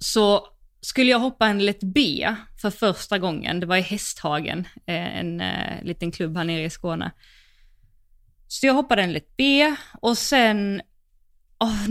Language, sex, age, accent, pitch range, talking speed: Swedish, female, 20-39, native, 175-220 Hz, 160 wpm